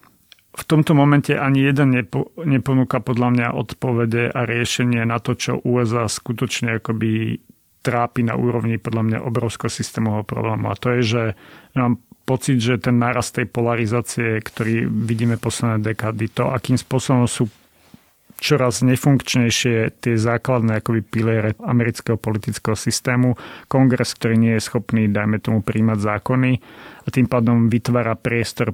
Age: 40-59